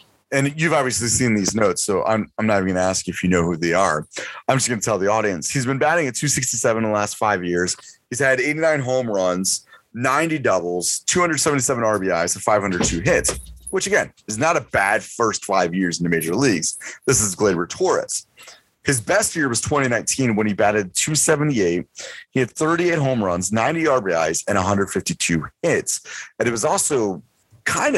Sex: male